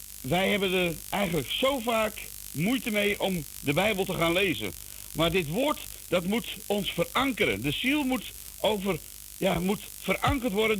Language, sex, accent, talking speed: Dutch, male, Dutch, 160 wpm